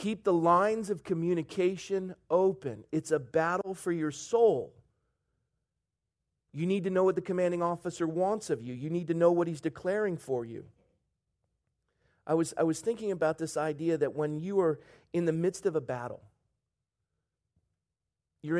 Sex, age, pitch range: male, 40-59, 135-180 Hz